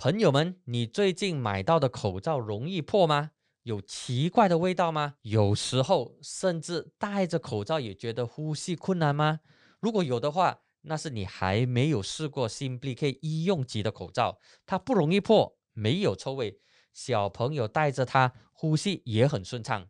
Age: 20-39